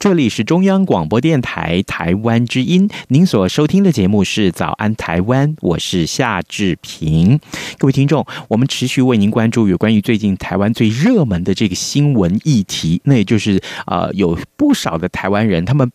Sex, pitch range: male, 100-150 Hz